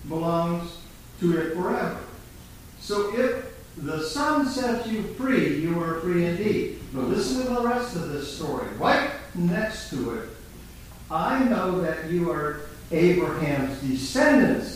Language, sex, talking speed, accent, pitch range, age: English, male, 140 wpm, American, 140-215 Hz, 50-69